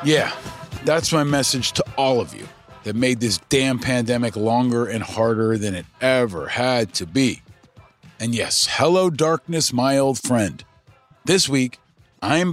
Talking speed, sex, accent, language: 155 wpm, male, American, English